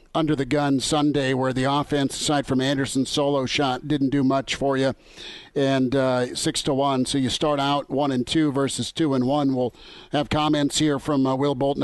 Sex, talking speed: male, 205 wpm